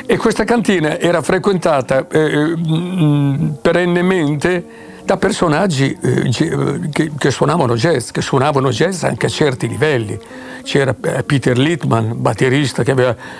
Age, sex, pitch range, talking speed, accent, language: 60-79, male, 140-175 Hz, 120 wpm, native, Italian